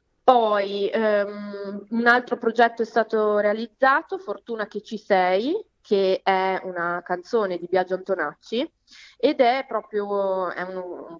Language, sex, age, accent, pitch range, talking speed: Italian, female, 20-39, native, 180-210 Hz, 130 wpm